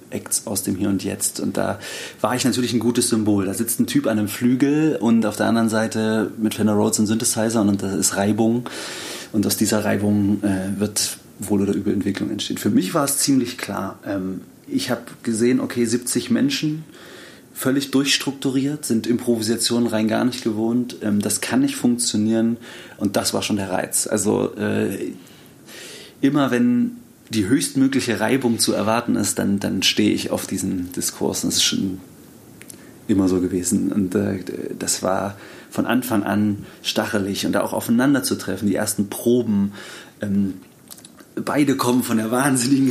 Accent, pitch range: German, 105-120 Hz